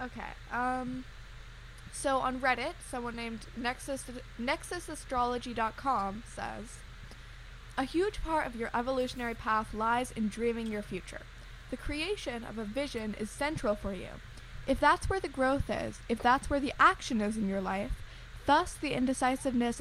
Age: 10-29